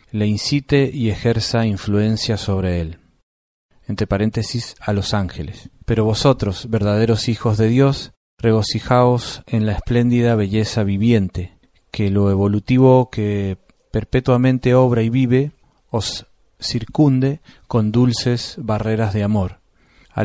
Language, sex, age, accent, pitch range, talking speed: Spanish, male, 40-59, Argentinian, 105-130 Hz, 120 wpm